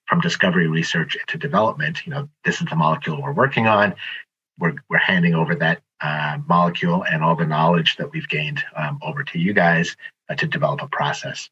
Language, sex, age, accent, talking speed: English, male, 30-49, American, 200 wpm